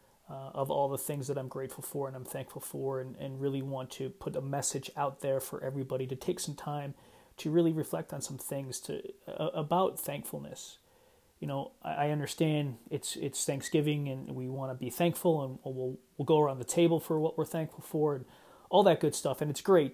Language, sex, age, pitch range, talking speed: English, male, 30-49, 135-155 Hz, 215 wpm